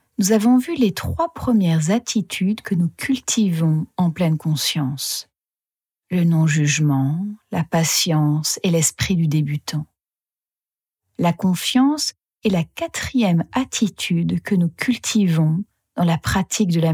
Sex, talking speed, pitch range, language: female, 125 wpm, 155-200 Hz, French